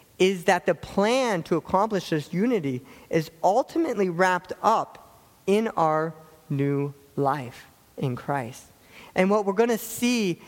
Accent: American